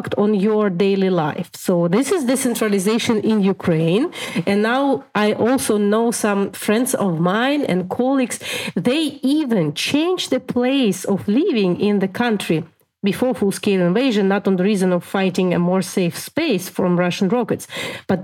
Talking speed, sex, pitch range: 160 wpm, female, 190-240 Hz